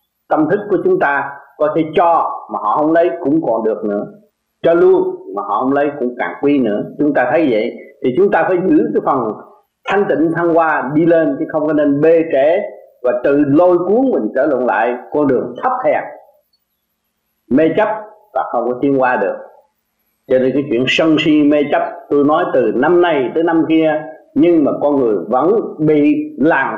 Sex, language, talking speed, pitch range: male, Vietnamese, 205 wpm, 140-225 Hz